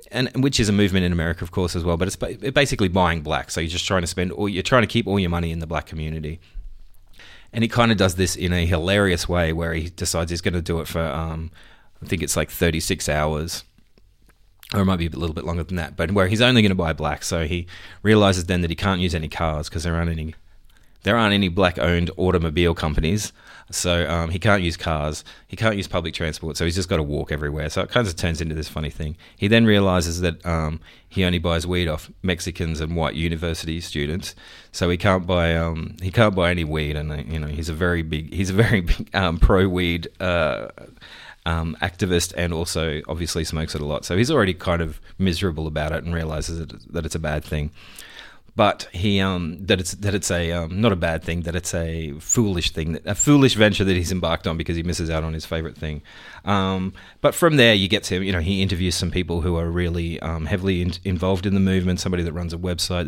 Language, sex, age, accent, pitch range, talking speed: English, male, 30-49, Australian, 80-95 Hz, 240 wpm